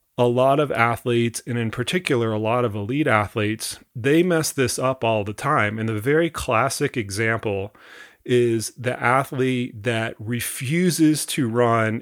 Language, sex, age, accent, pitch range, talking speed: English, male, 40-59, American, 110-130 Hz, 155 wpm